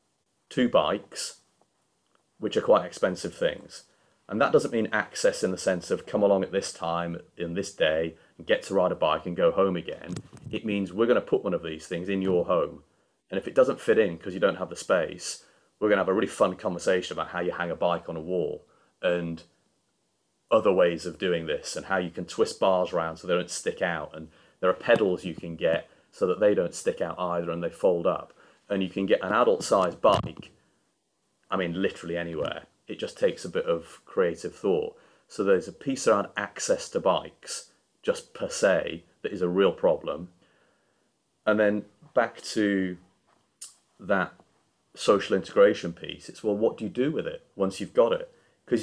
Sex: male